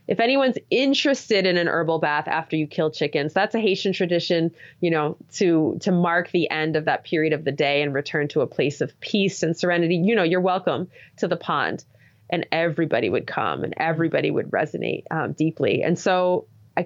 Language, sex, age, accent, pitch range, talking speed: English, female, 20-39, American, 150-180 Hz, 205 wpm